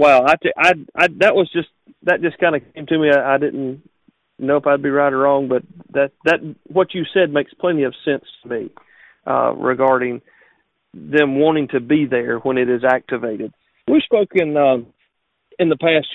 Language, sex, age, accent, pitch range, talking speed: English, male, 40-59, American, 135-165 Hz, 200 wpm